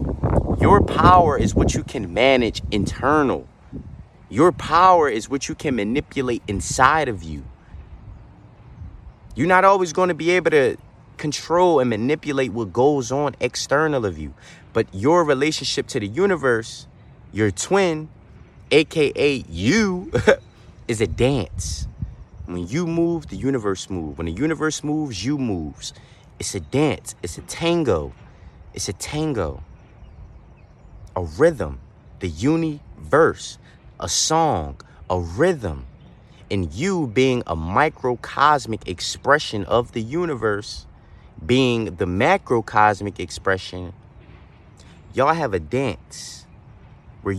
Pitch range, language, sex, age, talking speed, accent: 90-145 Hz, English, male, 30-49, 120 wpm, American